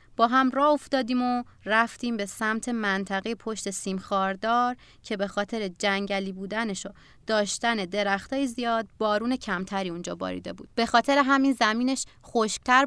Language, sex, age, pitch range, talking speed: Persian, female, 30-49, 195-245 Hz, 135 wpm